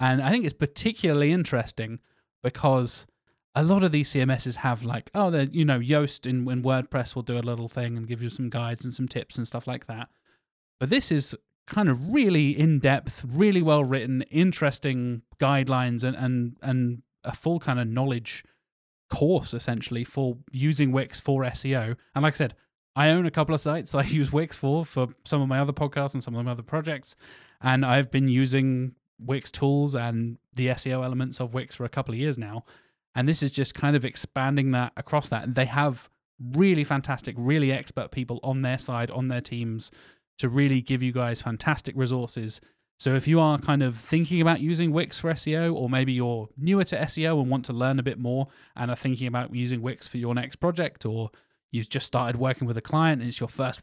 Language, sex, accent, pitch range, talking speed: English, male, British, 125-150 Hz, 210 wpm